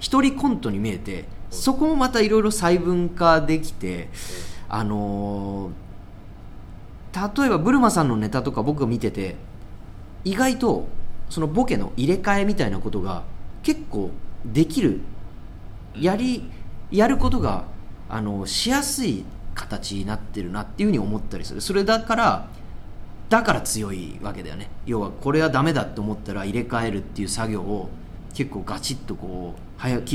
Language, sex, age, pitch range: Japanese, male, 30-49, 95-160 Hz